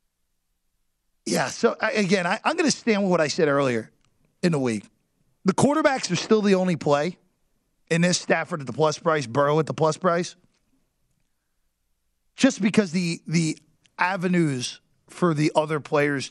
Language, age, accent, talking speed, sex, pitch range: English, 40-59, American, 160 wpm, male, 150-205 Hz